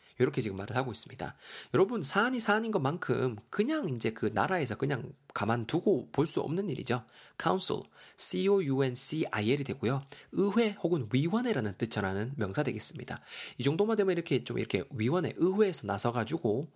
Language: Korean